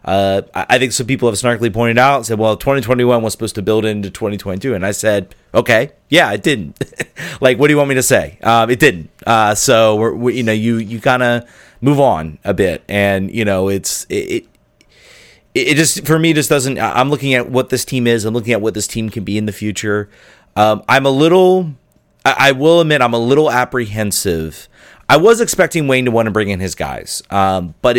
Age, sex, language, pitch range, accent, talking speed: 30-49, male, English, 100-130 Hz, American, 225 wpm